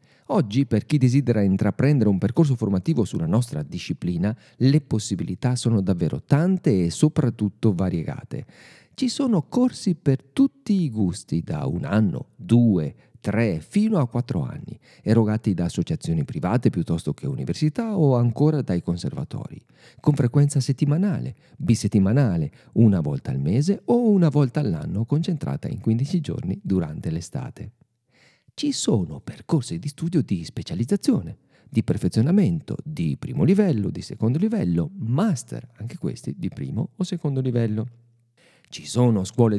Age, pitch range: 40-59, 100-155 Hz